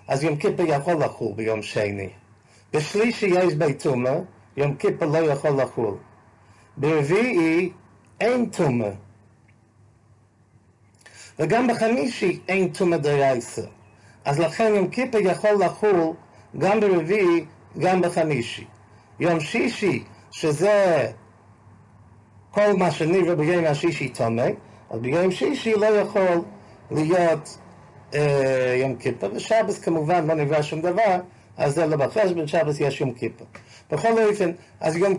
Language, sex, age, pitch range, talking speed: English, male, 50-69, 120-185 Hz, 100 wpm